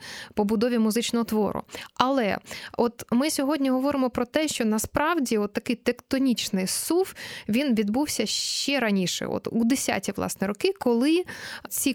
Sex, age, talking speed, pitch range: female, 20-39, 135 wpm, 210-275 Hz